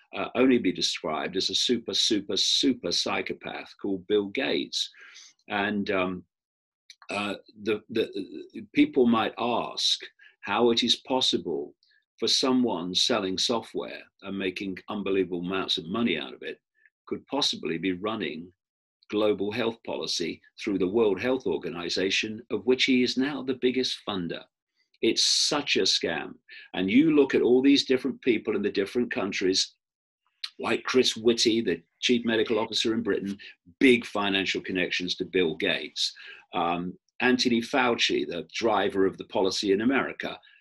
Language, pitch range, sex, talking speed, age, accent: English, 95-130 Hz, male, 150 wpm, 50-69, British